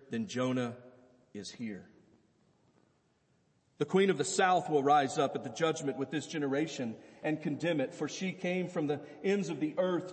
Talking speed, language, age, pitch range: 180 wpm, English, 40-59, 145-180 Hz